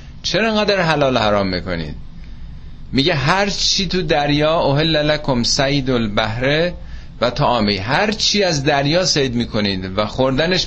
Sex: male